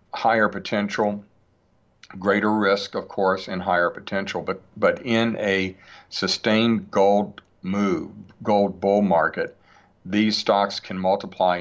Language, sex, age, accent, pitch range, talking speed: English, male, 50-69, American, 90-105 Hz, 120 wpm